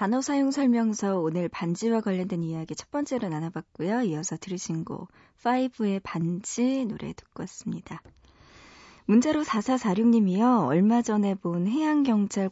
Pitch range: 180-245 Hz